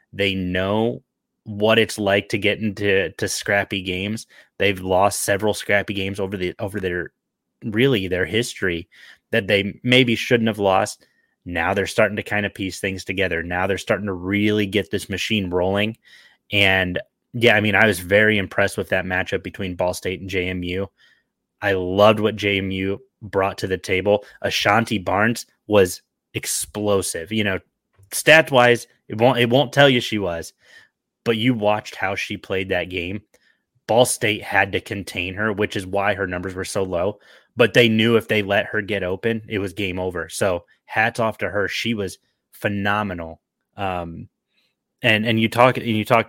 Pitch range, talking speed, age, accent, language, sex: 95-110 Hz, 180 wpm, 20-39, American, English, male